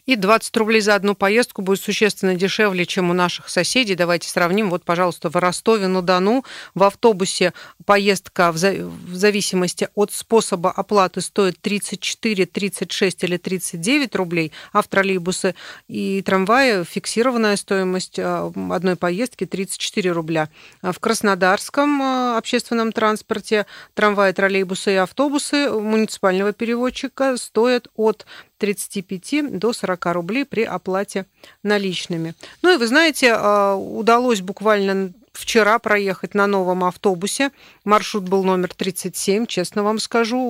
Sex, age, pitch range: female, 40-59, 185-225 Hz